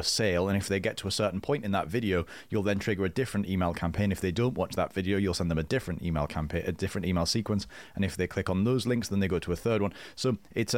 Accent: British